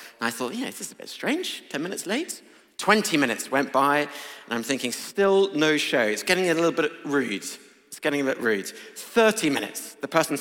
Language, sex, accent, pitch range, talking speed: English, male, British, 105-160 Hz, 210 wpm